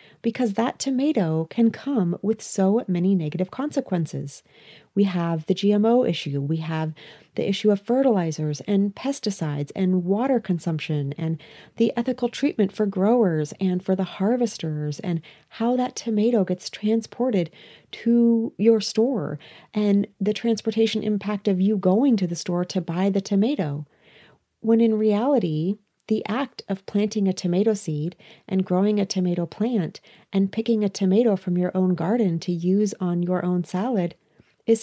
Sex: female